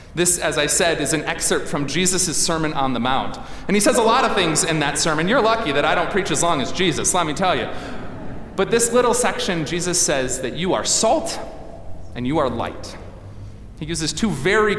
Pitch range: 150-230 Hz